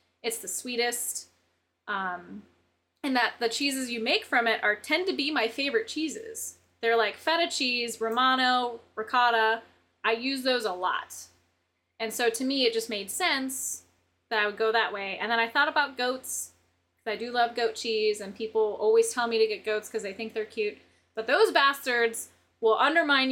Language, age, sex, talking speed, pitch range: English, 20-39, female, 190 wpm, 225-275 Hz